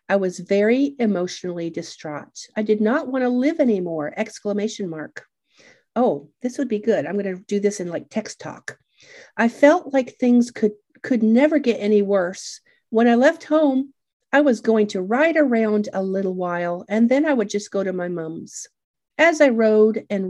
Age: 50-69